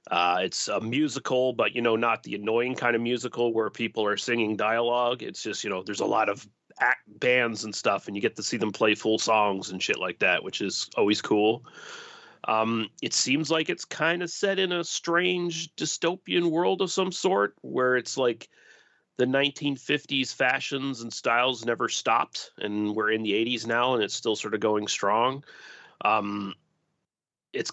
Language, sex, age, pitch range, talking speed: English, male, 30-49, 110-125 Hz, 190 wpm